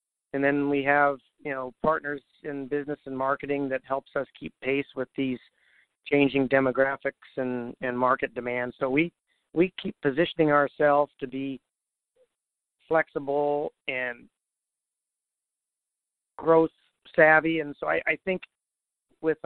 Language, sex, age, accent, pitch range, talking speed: English, male, 50-69, American, 135-155 Hz, 130 wpm